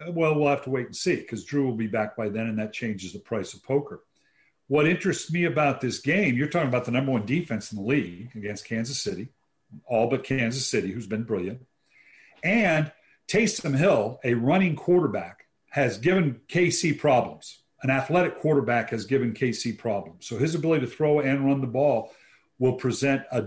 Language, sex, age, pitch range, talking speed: English, male, 50-69, 120-155 Hz, 195 wpm